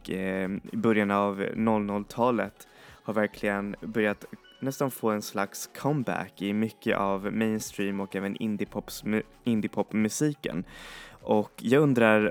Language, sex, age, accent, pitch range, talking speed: Swedish, male, 20-39, native, 100-110 Hz, 110 wpm